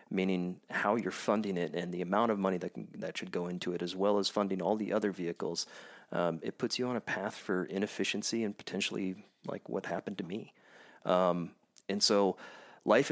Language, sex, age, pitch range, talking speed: English, male, 30-49, 90-105 Hz, 205 wpm